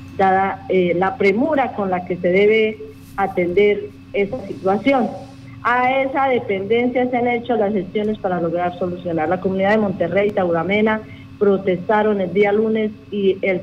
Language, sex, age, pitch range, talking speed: Spanish, female, 40-59, 190-225 Hz, 150 wpm